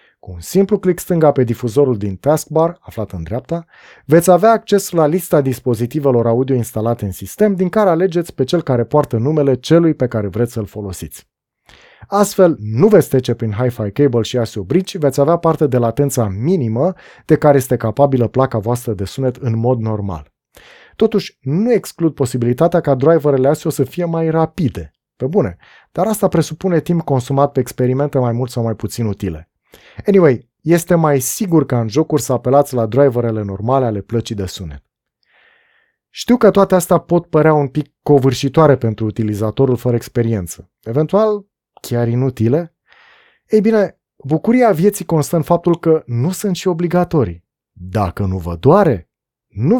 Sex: male